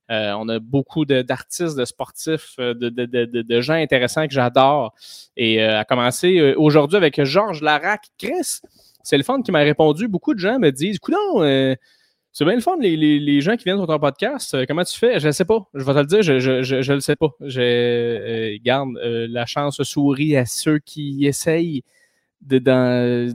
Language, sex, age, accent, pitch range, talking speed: French, male, 20-39, Canadian, 125-155 Hz, 220 wpm